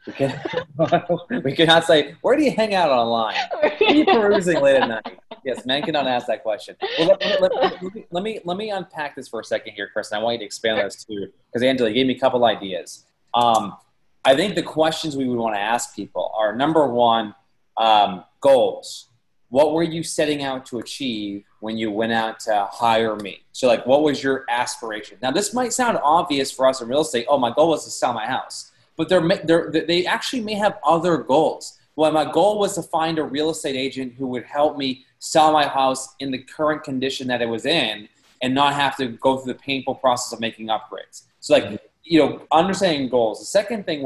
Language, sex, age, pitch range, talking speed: English, male, 20-39, 125-165 Hz, 225 wpm